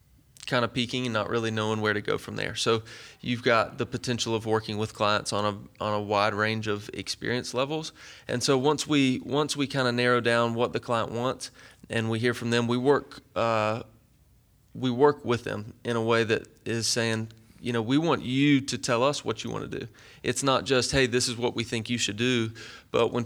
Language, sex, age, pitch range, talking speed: English, male, 30-49, 110-125 Hz, 230 wpm